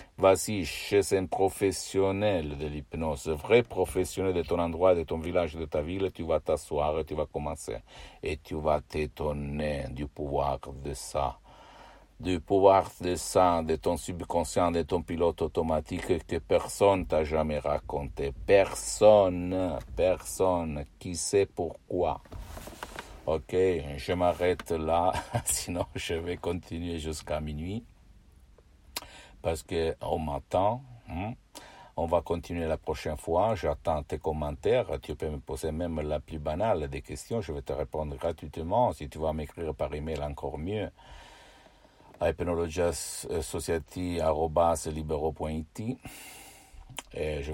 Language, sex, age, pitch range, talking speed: Italian, male, 60-79, 75-90 Hz, 125 wpm